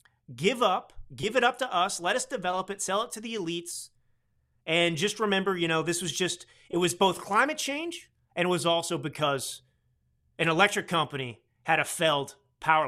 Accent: American